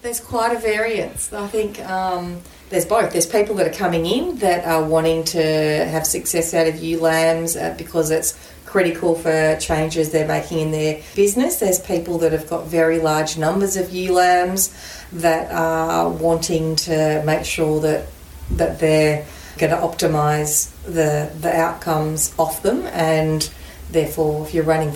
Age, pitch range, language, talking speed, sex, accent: 30-49, 155-180 Hz, English, 165 wpm, female, Australian